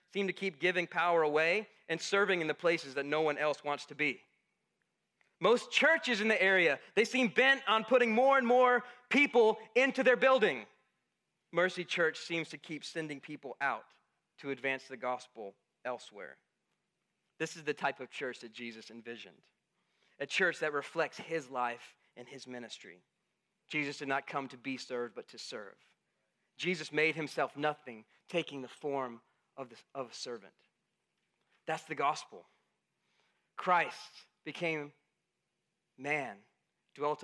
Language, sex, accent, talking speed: English, male, American, 150 wpm